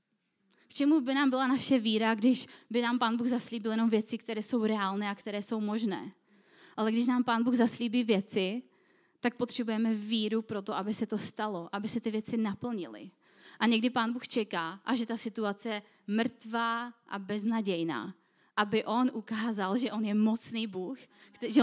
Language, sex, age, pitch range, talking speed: Czech, female, 20-39, 215-255 Hz, 180 wpm